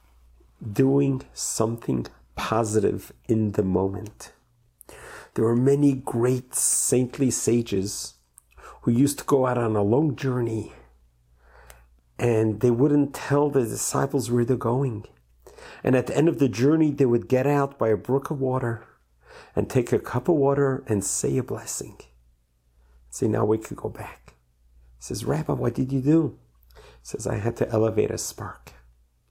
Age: 50-69